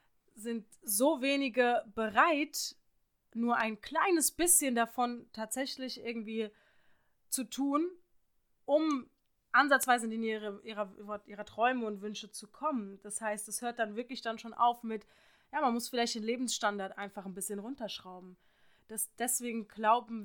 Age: 20-39